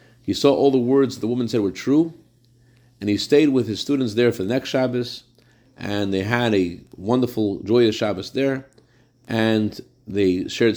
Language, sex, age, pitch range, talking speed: English, male, 40-59, 105-125 Hz, 180 wpm